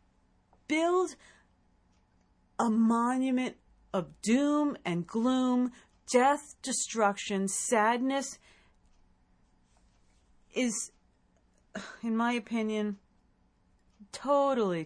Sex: female